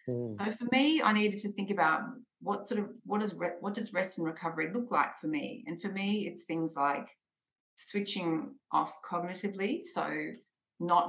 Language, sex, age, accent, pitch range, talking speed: English, female, 40-59, Australian, 170-245 Hz, 185 wpm